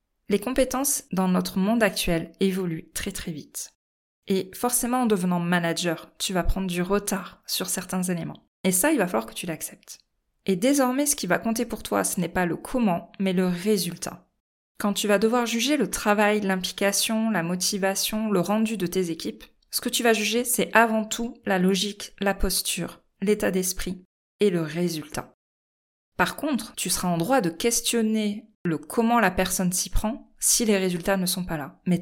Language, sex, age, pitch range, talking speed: French, female, 20-39, 175-220 Hz, 190 wpm